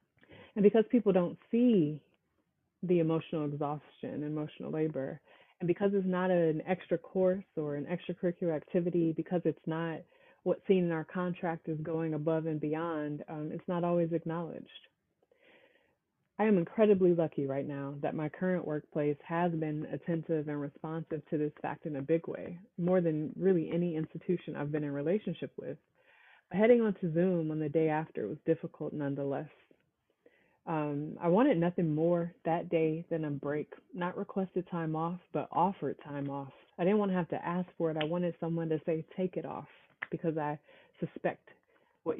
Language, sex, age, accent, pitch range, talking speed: English, female, 30-49, American, 155-180 Hz, 175 wpm